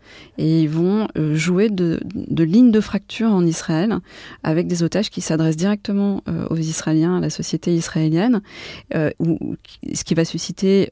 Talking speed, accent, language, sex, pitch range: 160 wpm, French, French, female, 155-190 Hz